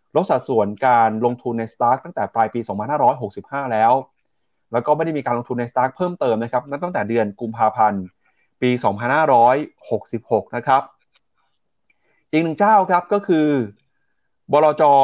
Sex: male